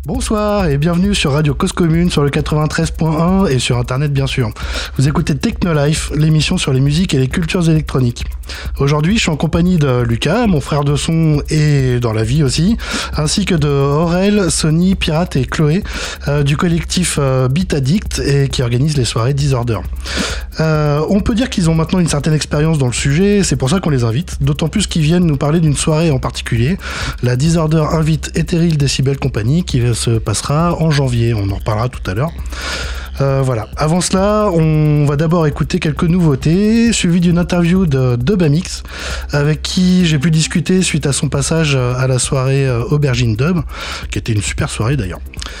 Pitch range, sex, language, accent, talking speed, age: 130-170 Hz, male, French, French, 190 wpm, 20-39